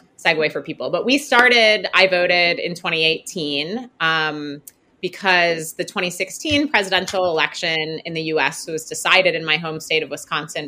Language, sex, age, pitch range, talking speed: English, female, 20-39, 155-205 Hz, 150 wpm